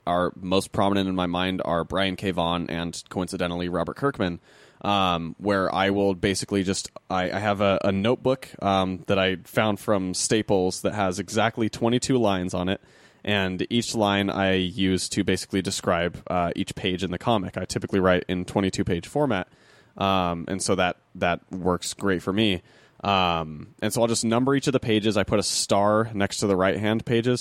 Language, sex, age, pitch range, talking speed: English, male, 20-39, 90-110 Hz, 195 wpm